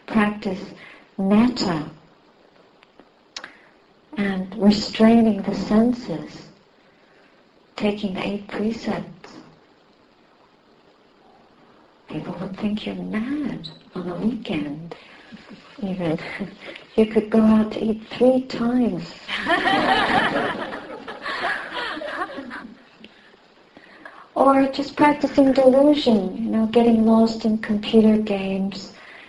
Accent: American